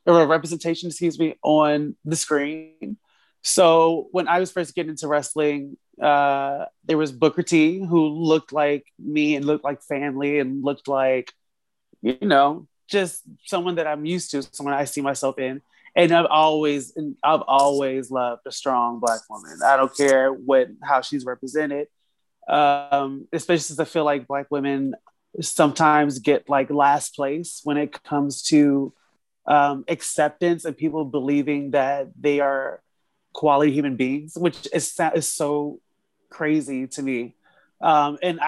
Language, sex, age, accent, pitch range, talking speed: English, male, 30-49, American, 135-160 Hz, 155 wpm